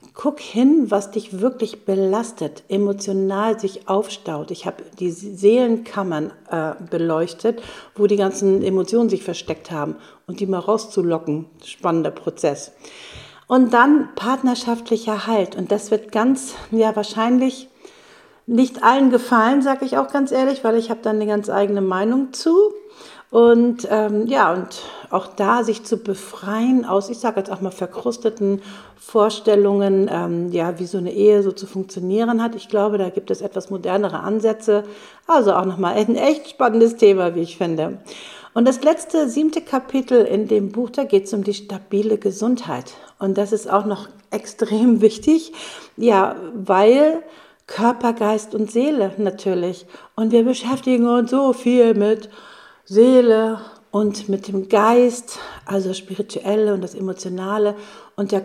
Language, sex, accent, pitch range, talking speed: German, female, German, 195-235 Hz, 155 wpm